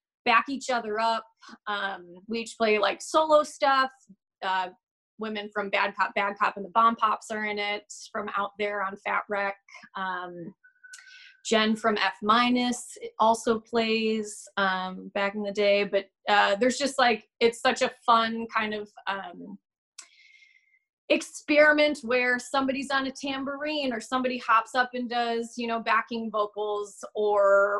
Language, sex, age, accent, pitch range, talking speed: English, female, 20-39, American, 205-245 Hz, 155 wpm